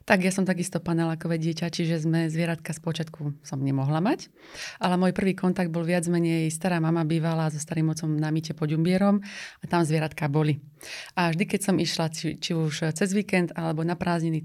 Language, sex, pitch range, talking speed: Slovak, female, 165-195 Hz, 195 wpm